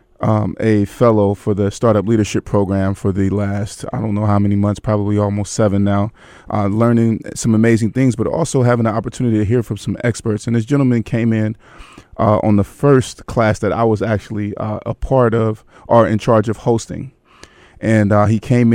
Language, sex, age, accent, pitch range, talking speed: English, male, 30-49, American, 105-115 Hz, 200 wpm